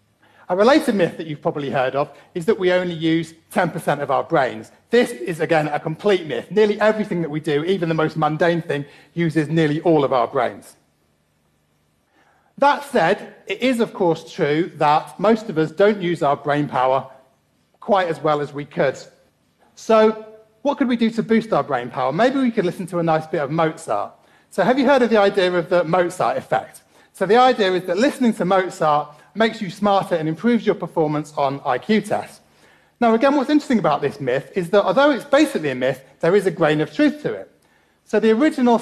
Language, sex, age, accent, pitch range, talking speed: English, male, 40-59, British, 155-215 Hz, 210 wpm